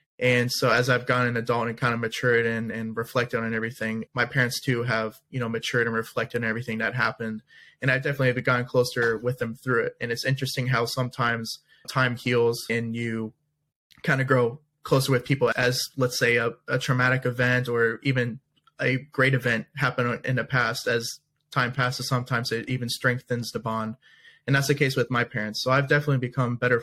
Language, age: English, 20-39